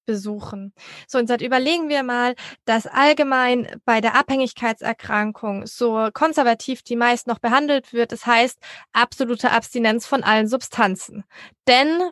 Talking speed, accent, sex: 135 wpm, German, female